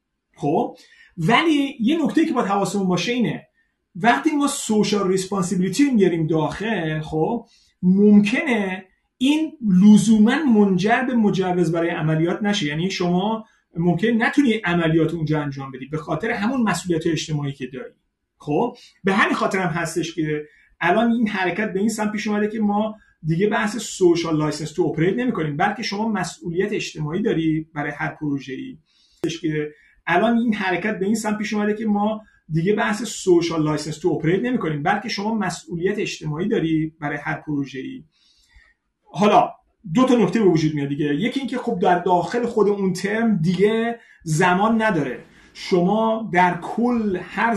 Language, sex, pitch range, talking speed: Persian, male, 170-225 Hz, 150 wpm